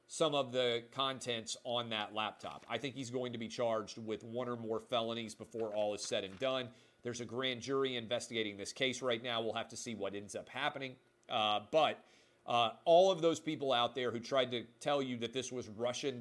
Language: English